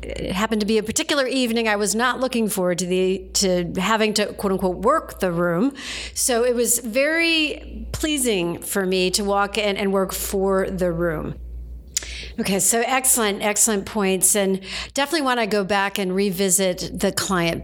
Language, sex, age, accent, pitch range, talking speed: English, female, 50-69, American, 185-225 Hz, 175 wpm